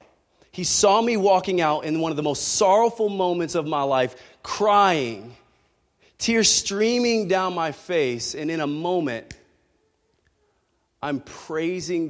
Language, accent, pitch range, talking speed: English, American, 130-185 Hz, 135 wpm